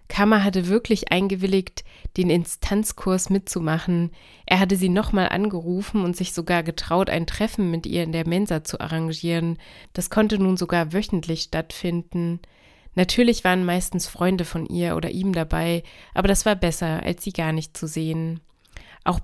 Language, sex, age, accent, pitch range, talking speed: German, female, 30-49, German, 170-195 Hz, 160 wpm